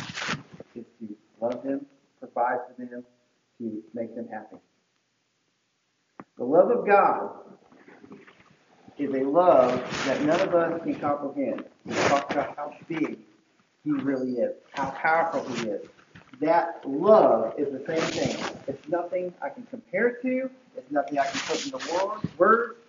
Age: 40-59